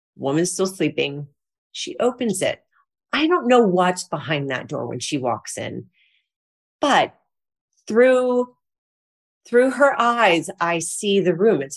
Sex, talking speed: female, 140 wpm